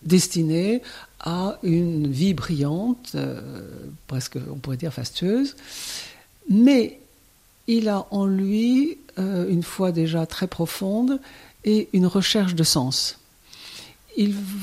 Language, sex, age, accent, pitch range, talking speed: French, female, 60-79, French, 155-210 Hz, 115 wpm